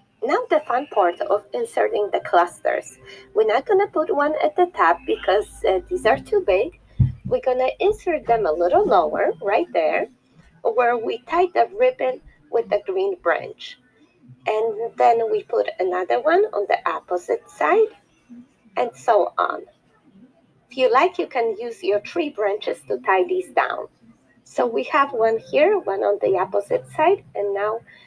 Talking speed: 165 wpm